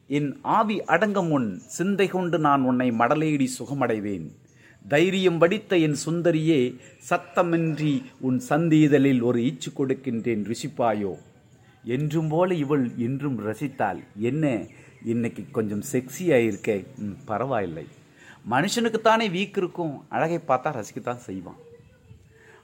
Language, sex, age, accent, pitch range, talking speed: Tamil, male, 50-69, native, 125-180 Hz, 105 wpm